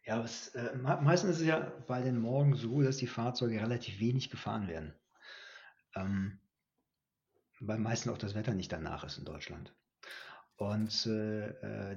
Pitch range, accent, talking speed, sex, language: 105-125 Hz, German, 155 wpm, male, German